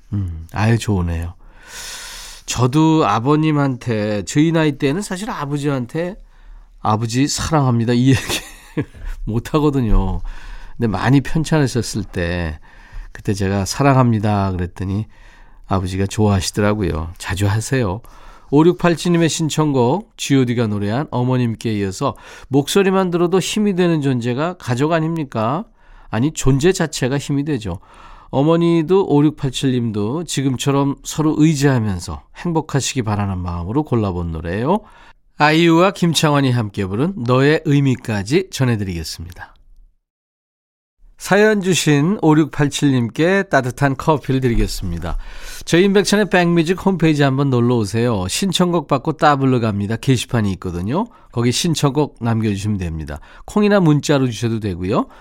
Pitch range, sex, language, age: 105-155 Hz, male, Korean, 40-59